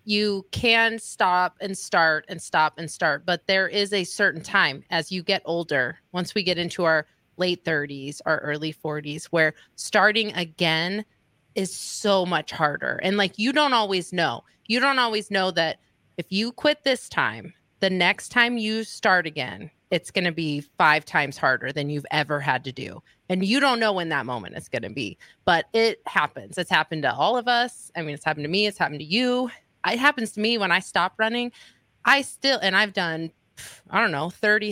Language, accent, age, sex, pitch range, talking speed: English, American, 30-49, female, 155-205 Hz, 205 wpm